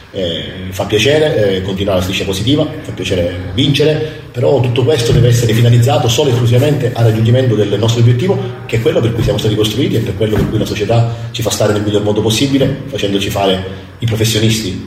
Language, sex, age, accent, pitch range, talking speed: Italian, male, 40-59, native, 100-120 Hz, 205 wpm